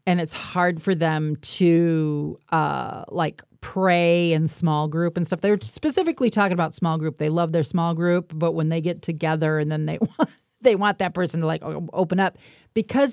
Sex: female